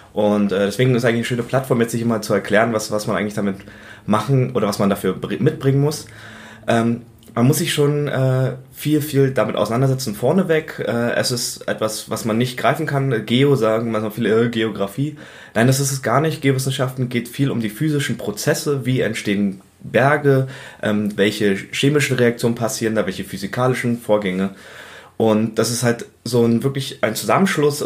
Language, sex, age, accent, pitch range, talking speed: German, male, 20-39, German, 105-135 Hz, 190 wpm